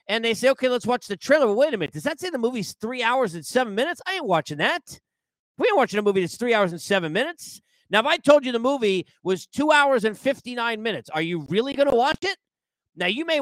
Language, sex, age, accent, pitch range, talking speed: English, male, 40-59, American, 165-265 Hz, 265 wpm